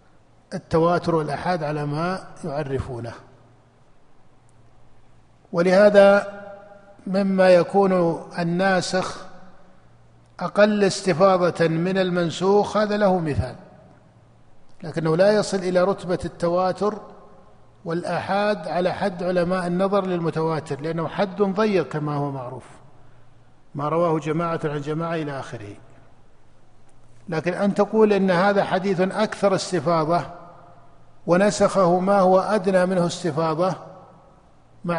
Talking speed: 95 wpm